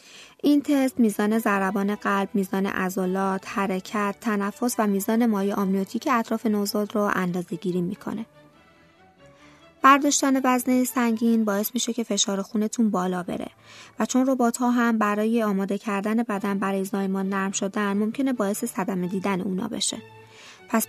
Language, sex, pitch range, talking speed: Persian, female, 195-240 Hz, 140 wpm